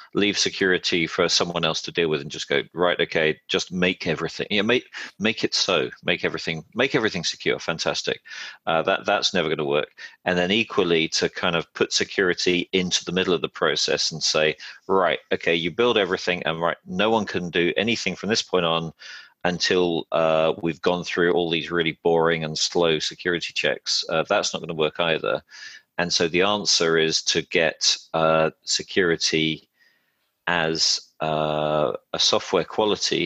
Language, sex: English, male